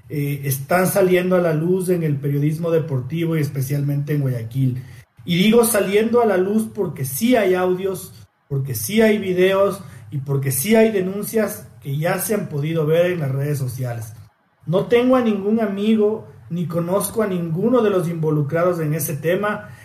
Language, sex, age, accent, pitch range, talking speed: Spanish, male, 40-59, Mexican, 145-190 Hz, 175 wpm